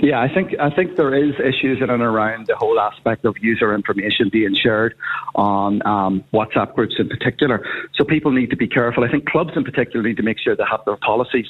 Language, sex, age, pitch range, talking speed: English, male, 40-59, 110-135 Hz, 230 wpm